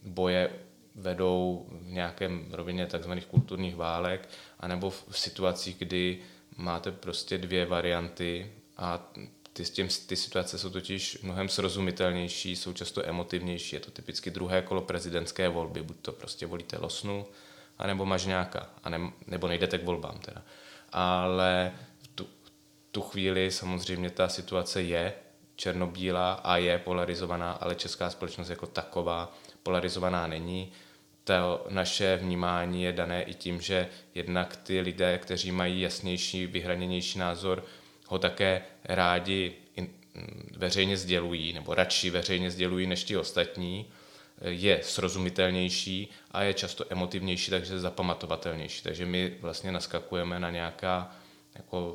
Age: 20-39